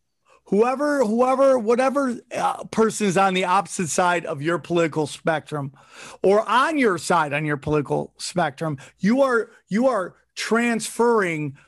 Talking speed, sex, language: 140 wpm, male, English